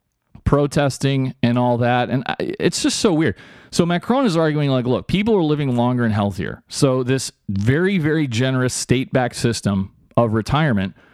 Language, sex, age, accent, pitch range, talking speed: English, male, 40-59, American, 105-135 Hz, 160 wpm